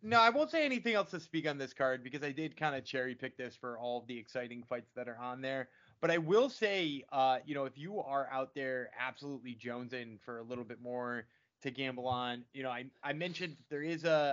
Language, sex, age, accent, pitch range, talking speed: English, male, 20-39, American, 130-170 Hz, 245 wpm